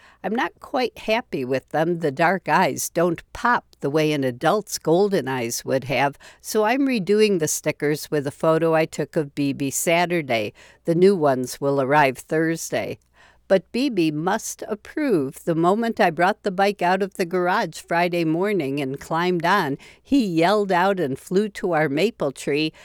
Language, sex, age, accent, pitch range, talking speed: English, female, 60-79, American, 145-195 Hz, 175 wpm